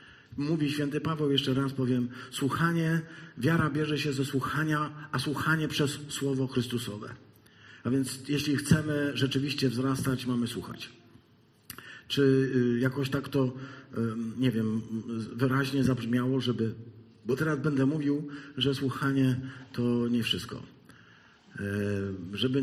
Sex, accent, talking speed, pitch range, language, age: male, native, 115 wpm, 120-150 Hz, Polish, 50-69